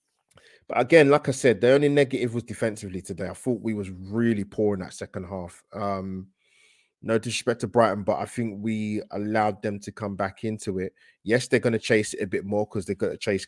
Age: 20-39